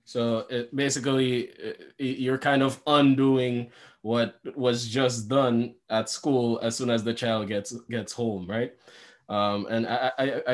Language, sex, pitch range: English, male, 100-125 Hz